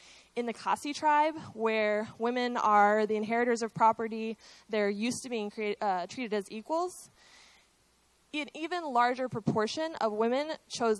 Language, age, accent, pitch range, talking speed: English, 20-39, American, 215-265 Hz, 140 wpm